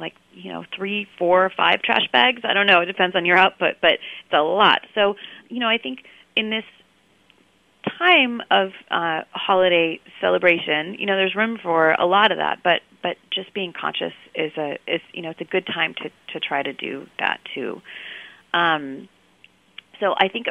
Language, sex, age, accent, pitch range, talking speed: English, female, 30-49, American, 160-205 Hz, 195 wpm